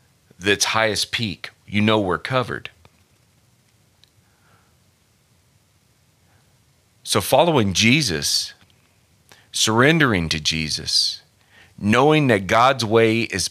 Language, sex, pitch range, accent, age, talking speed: English, male, 90-115 Hz, American, 40-59, 80 wpm